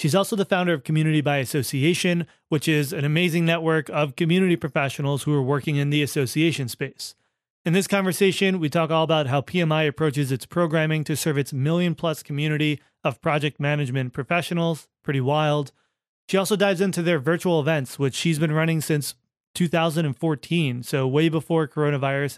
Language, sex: English, male